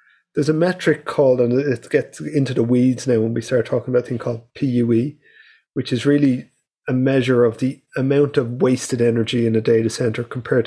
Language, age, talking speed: English, 30-49, 200 wpm